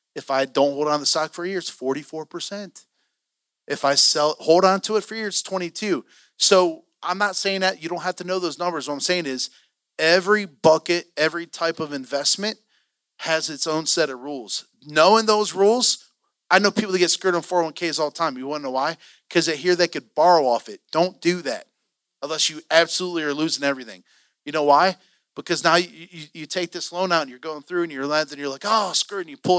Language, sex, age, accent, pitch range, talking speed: English, male, 30-49, American, 155-195 Hz, 235 wpm